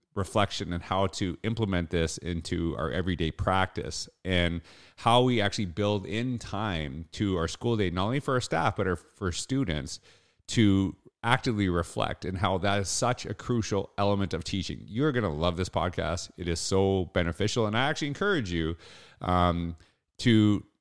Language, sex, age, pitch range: English, male, 30-49, 90-110 Hz